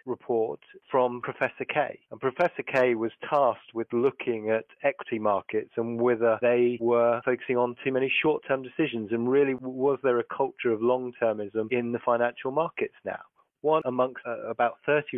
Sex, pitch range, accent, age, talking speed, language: male, 115-130 Hz, British, 30-49, 165 wpm, English